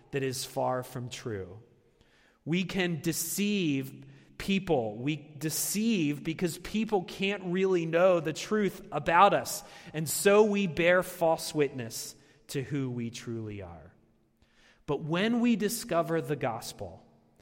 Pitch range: 145-200 Hz